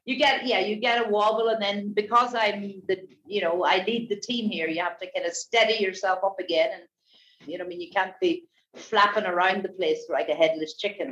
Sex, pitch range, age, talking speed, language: female, 180-225 Hz, 50-69, 235 wpm, English